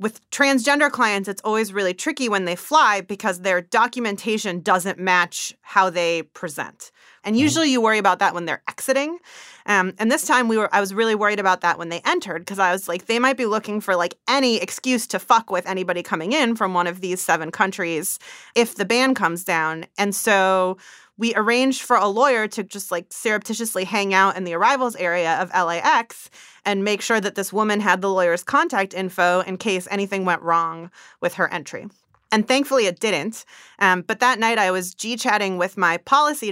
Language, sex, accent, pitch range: English, female, American, 185-230 Hz